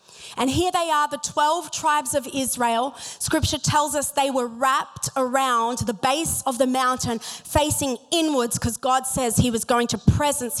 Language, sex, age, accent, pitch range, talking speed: English, female, 30-49, Australian, 235-290 Hz, 175 wpm